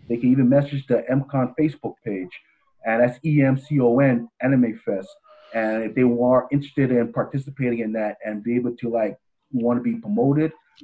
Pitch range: 115-130 Hz